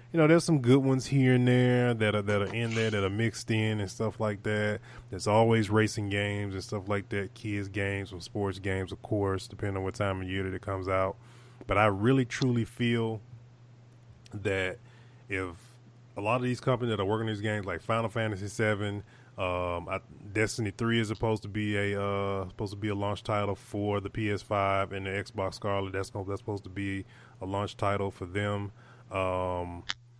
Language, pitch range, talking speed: English, 95-115 Hz, 205 wpm